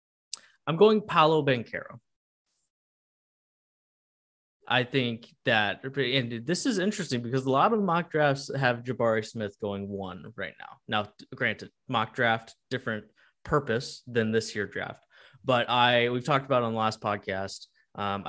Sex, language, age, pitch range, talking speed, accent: male, English, 20-39, 105-125 Hz, 145 wpm, American